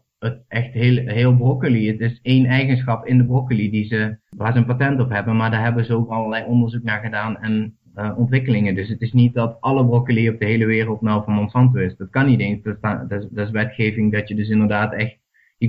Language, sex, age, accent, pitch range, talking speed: Dutch, male, 20-39, Dutch, 105-125 Hz, 235 wpm